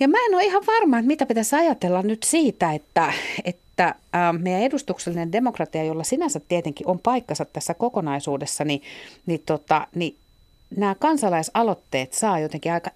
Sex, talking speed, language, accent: female, 155 wpm, Finnish, native